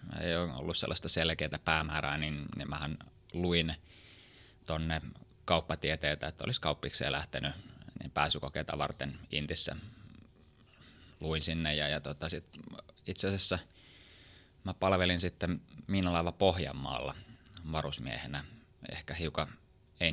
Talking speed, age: 105 wpm, 20-39